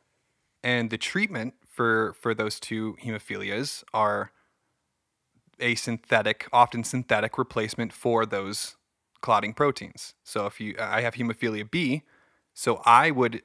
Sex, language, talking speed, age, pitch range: male, English, 125 wpm, 30-49, 110-125 Hz